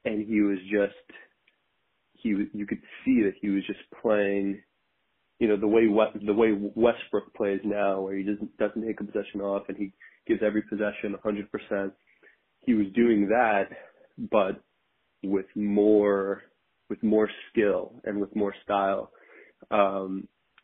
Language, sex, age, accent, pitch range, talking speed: English, male, 20-39, American, 100-105 Hz, 150 wpm